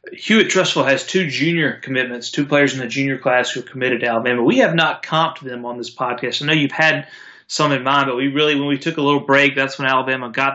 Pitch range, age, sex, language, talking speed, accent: 120-145 Hz, 30-49, male, English, 255 wpm, American